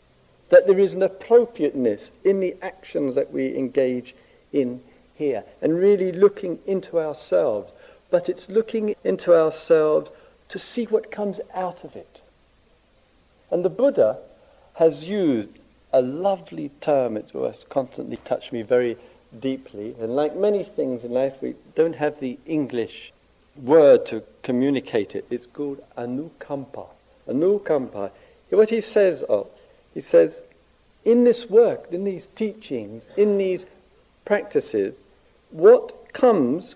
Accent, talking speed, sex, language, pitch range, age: British, 130 wpm, male, English, 150-225 Hz, 50-69